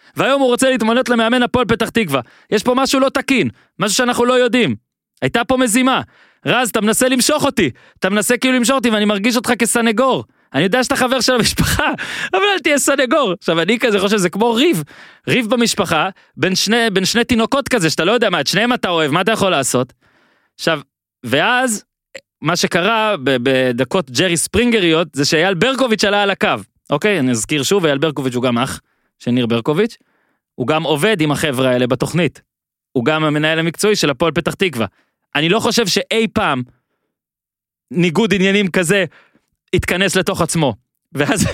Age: 20-39